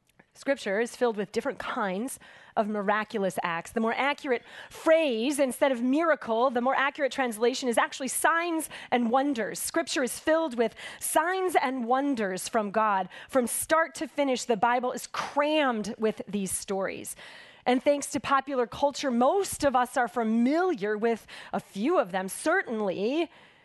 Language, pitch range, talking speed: English, 225-290 Hz, 155 wpm